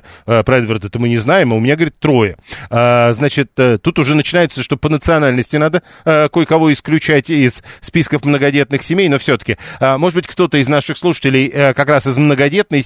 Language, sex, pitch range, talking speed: Russian, male, 125-155 Hz, 185 wpm